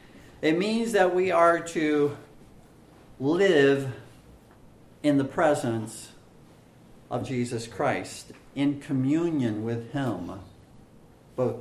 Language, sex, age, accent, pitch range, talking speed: English, male, 50-69, American, 130-195 Hz, 95 wpm